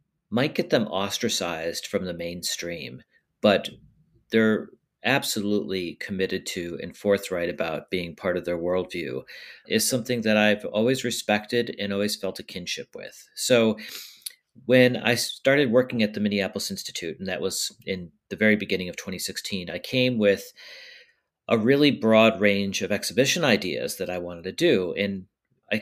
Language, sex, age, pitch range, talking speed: English, male, 40-59, 95-110 Hz, 155 wpm